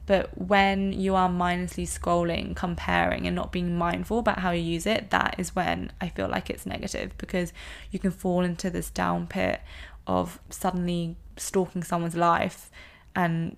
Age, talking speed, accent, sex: 20-39, 170 wpm, British, female